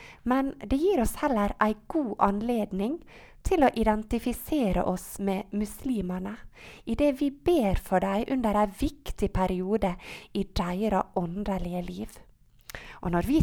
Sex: female